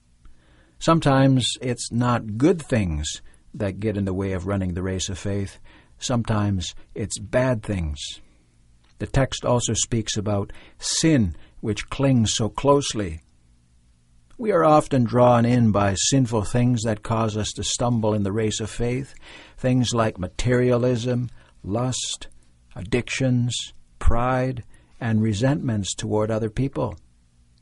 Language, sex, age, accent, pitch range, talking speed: English, male, 60-79, American, 95-140 Hz, 130 wpm